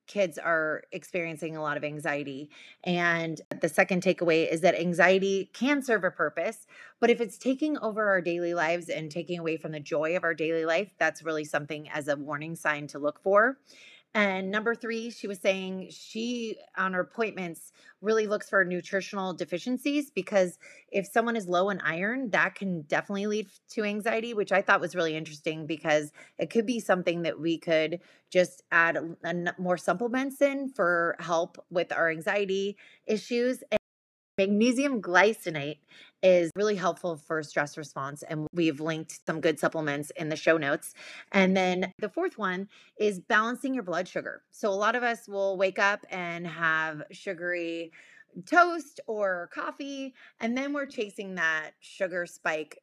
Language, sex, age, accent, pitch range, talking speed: English, female, 30-49, American, 165-215 Hz, 170 wpm